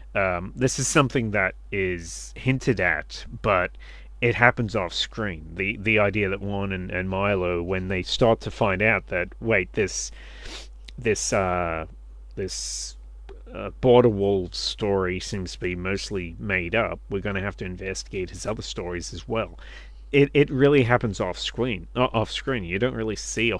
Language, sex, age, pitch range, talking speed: English, male, 30-49, 90-115 Hz, 170 wpm